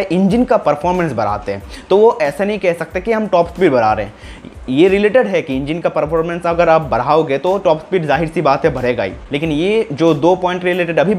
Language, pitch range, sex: Hindi, 145-185 Hz, male